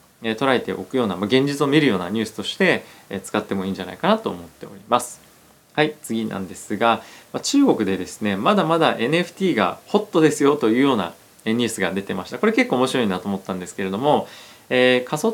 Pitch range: 105-150 Hz